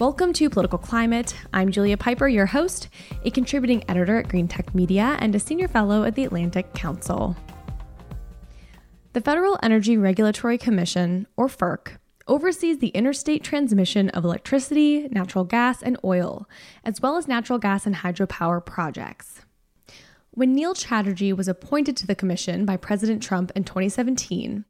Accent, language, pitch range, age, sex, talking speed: American, English, 190-260 Hz, 10-29, female, 150 wpm